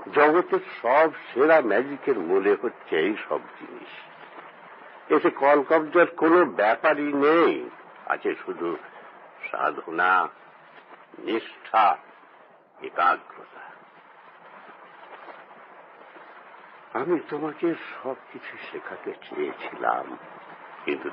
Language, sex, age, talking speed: Bengali, male, 60-79, 75 wpm